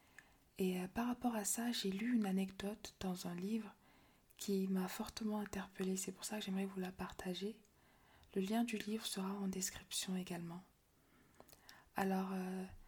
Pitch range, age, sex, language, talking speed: 190-220 Hz, 20-39, female, French, 155 wpm